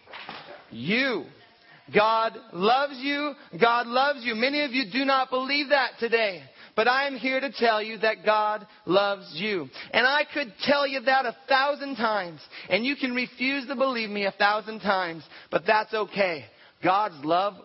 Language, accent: English, American